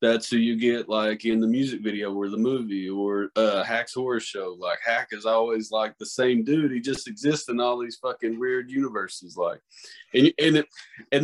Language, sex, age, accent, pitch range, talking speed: English, male, 20-39, American, 110-135 Hz, 210 wpm